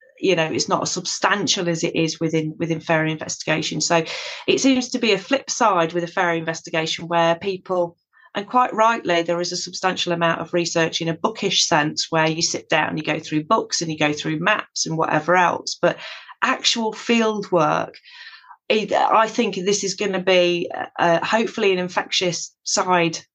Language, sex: English, female